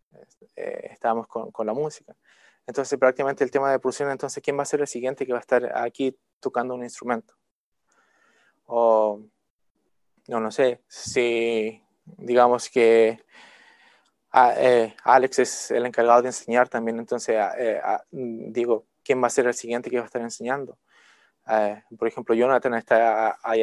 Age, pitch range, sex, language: 20-39, 115-140 Hz, male, Spanish